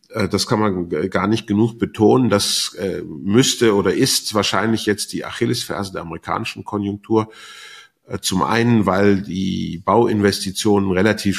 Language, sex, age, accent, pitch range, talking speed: German, male, 50-69, German, 85-110 Hz, 125 wpm